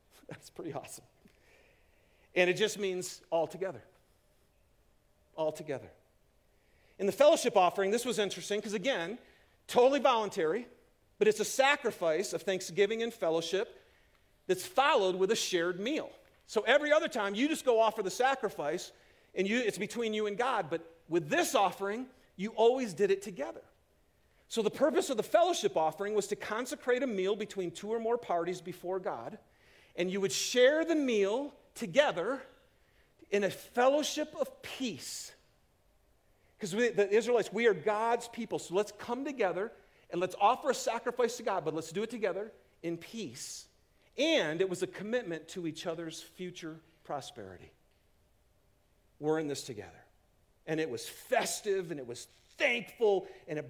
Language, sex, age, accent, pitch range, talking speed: English, male, 40-59, American, 160-235 Hz, 160 wpm